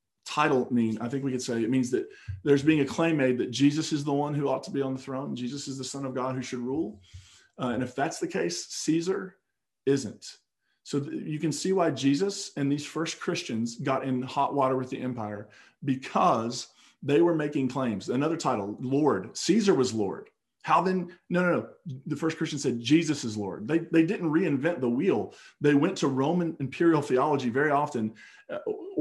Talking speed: 205 wpm